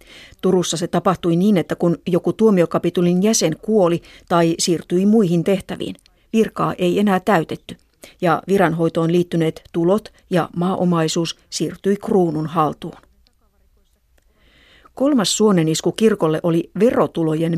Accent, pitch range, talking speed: native, 165-195 Hz, 110 wpm